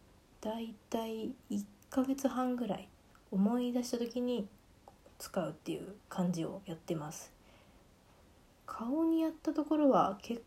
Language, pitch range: Japanese, 185-235 Hz